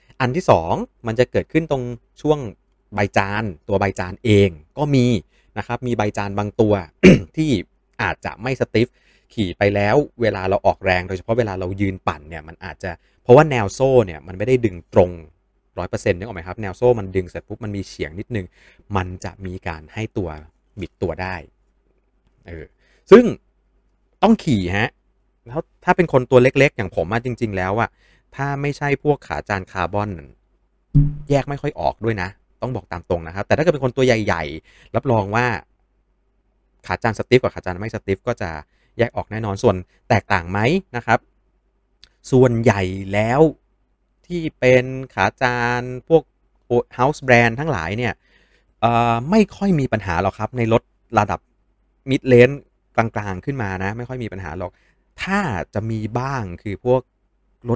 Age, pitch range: 30-49, 95-125 Hz